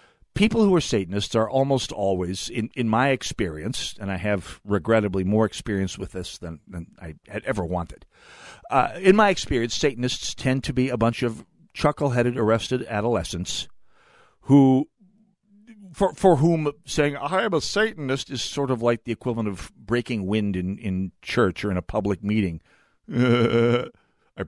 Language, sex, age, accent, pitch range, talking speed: English, male, 50-69, American, 105-150 Hz, 165 wpm